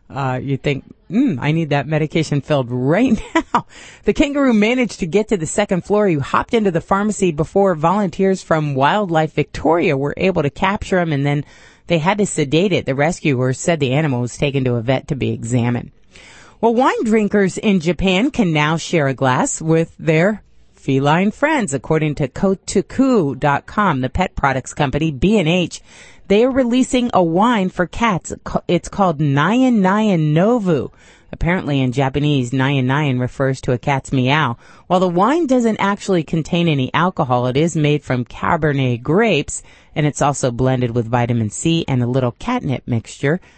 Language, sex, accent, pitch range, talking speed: English, female, American, 135-195 Hz, 170 wpm